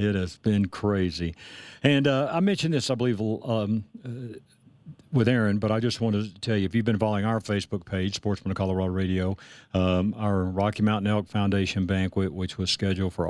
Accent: American